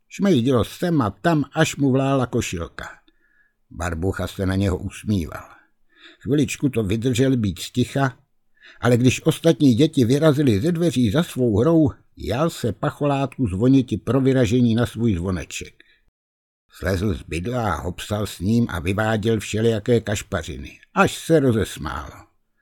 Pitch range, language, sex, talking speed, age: 95-135 Hz, Czech, male, 135 wpm, 60-79